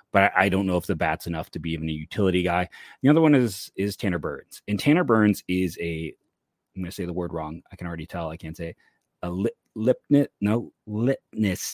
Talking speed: 230 wpm